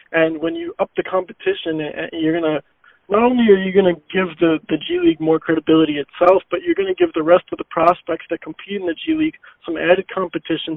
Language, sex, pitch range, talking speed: English, male, 155-175 Hz, 230 wpm